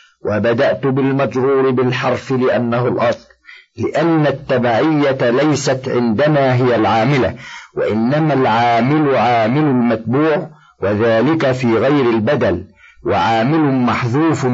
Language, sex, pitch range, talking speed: Arabic, male, 115-145 Hz, 85 wpm